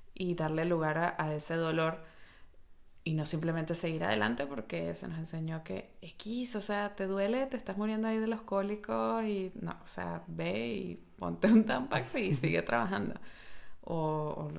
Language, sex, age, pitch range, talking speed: Spanish, female, 20-39, 145-205 Hz, 175 wpm